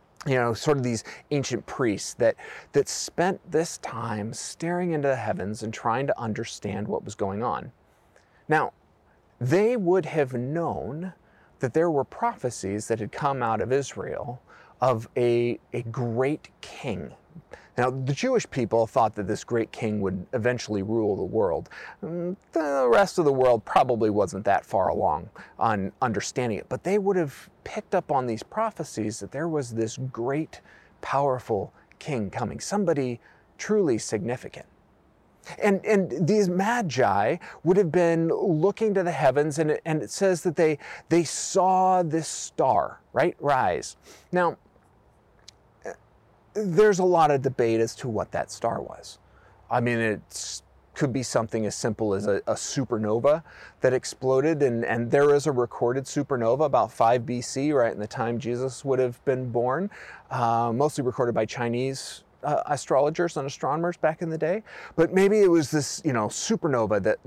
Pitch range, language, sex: 115-170 Hz, English, male